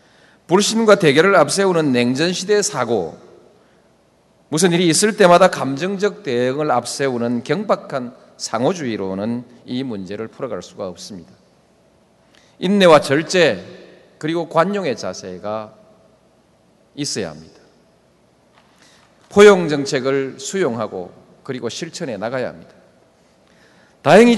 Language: Korean